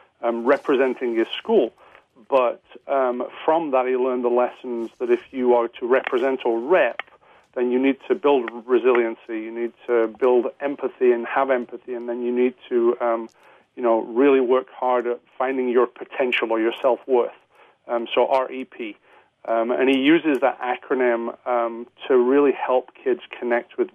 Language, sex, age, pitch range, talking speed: English, male, 40-59, 120-130 Hz, 165 wpm